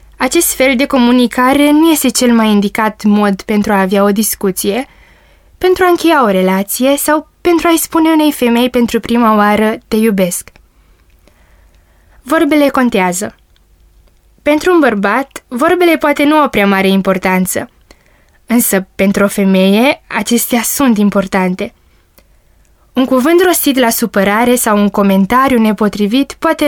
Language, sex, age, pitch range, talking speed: Romanian, female, 20-39, 195-270 Hz, 135 wpm